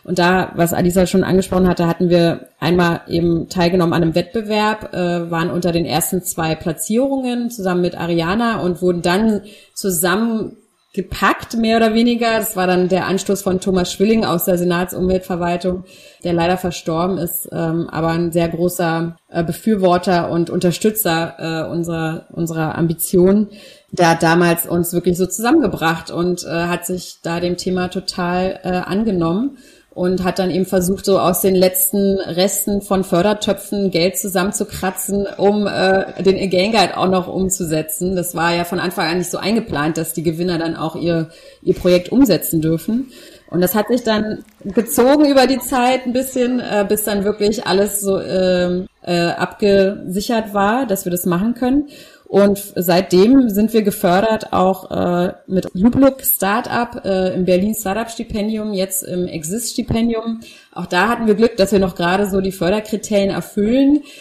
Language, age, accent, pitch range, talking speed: German, 30-49, German, 175-210 Hz, 160 wpm